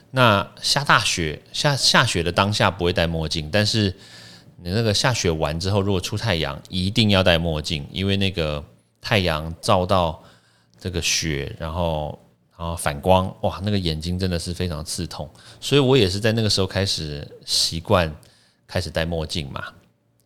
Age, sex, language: 30-49, male, Chinese